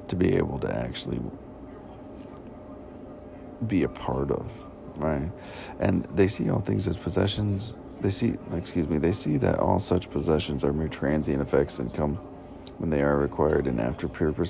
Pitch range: 70-90 Hz